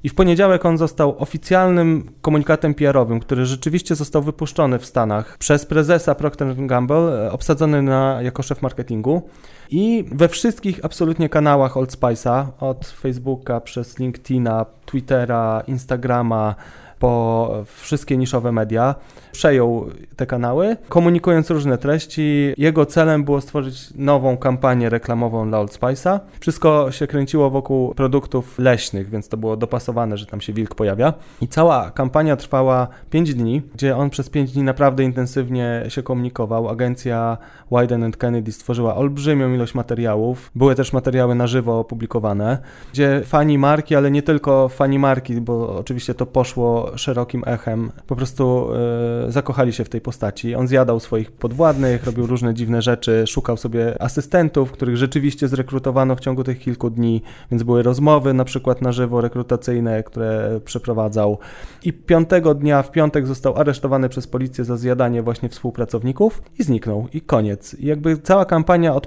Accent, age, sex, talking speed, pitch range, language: native, 20-39, male, 150 wpm, 120-145 Hz, Polish